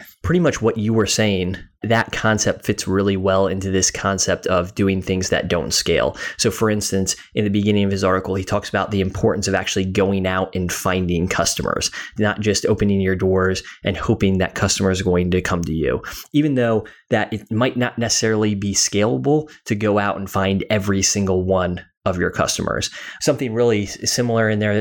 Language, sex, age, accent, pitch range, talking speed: English, male, 20-39, American, 95-115 Hz, 195 wpm